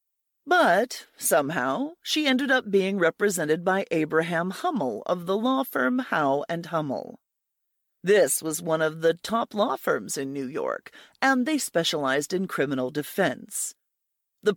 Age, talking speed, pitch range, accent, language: 40-59, 140 wpm, 155-245 Hz, American, English